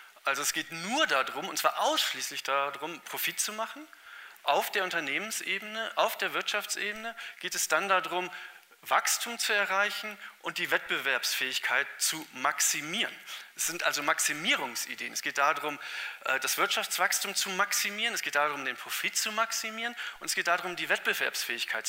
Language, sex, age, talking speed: German, male, 40-59, 150 wpm